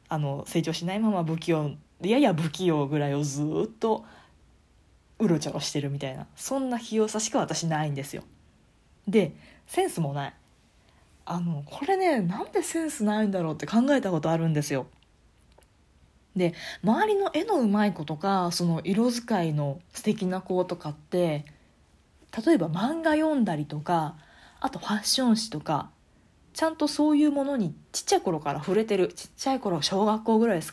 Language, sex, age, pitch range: Japanese, female, 20-39, 150-225 Hz